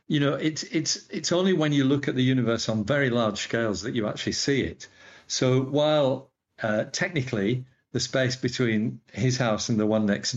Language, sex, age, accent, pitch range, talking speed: English, male, 50-69, British, 105-135 Hz, 195 wpm